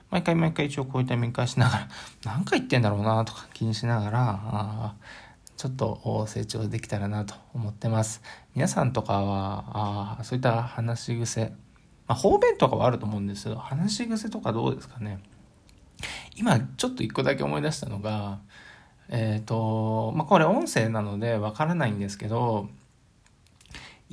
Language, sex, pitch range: Japanese, male, 110-145 Hz